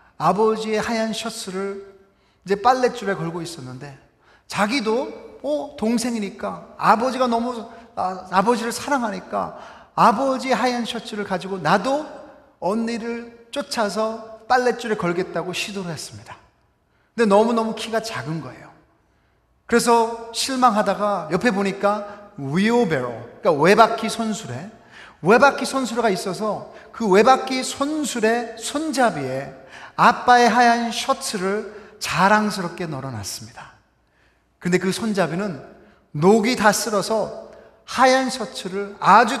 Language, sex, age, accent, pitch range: Korean, male, 40-59, native, 185-235 Hz